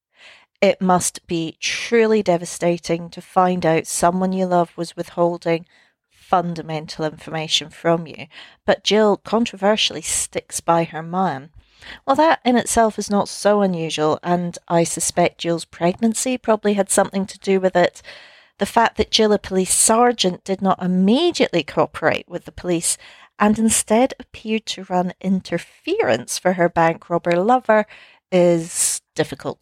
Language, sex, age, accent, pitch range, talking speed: English, female, 40-59, British, 170-215 Hz, 145 wpm